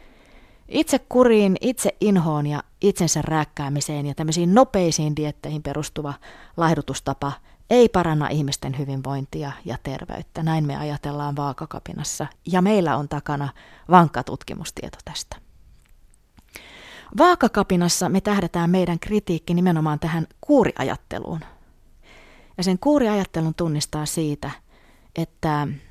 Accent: native